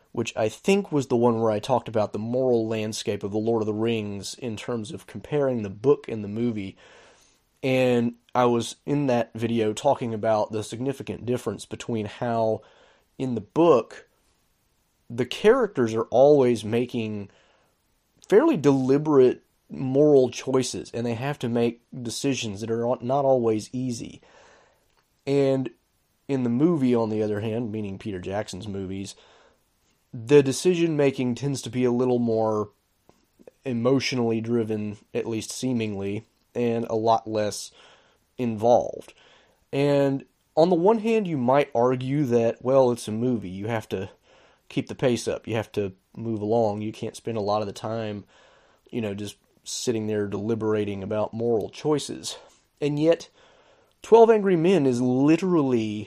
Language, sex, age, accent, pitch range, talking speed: English, male, 30-49, American, 110-135 Hz, 155 wpm